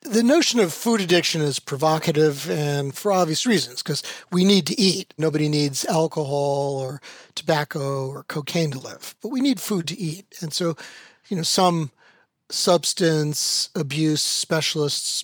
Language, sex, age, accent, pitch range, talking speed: English, male, 40-59, American, 150-190 Hz, 155 wpm